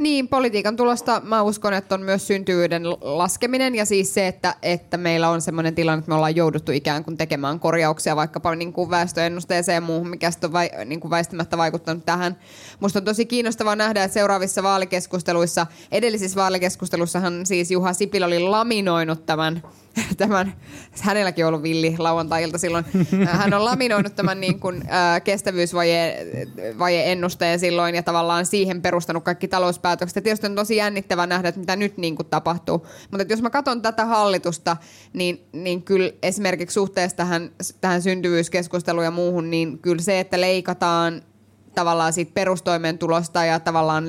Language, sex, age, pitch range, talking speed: Finnish, female, 20-39, 170-190 Hz, 150 wpm